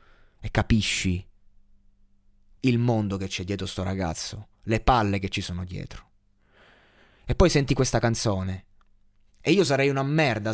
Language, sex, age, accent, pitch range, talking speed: Italian, male, 20-39, native, 100-125 Hz, 140 wpm